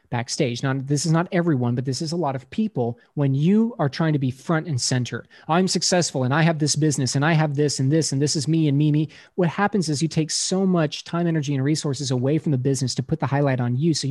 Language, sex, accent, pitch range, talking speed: English, male, American, 115-150 Hz, 270 wpm